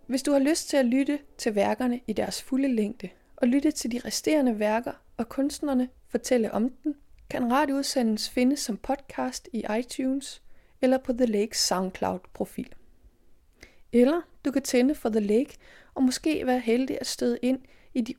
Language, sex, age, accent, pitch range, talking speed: Danish, female, 30-49, native, 215-270 Hz, 170 wpm